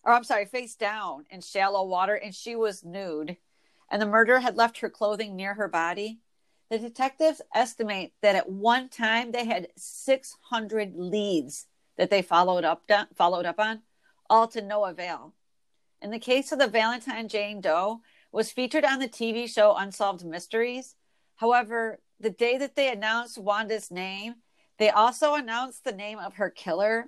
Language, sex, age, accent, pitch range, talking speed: English, female, 40-59, American, 190-240 Hz, 170 wpm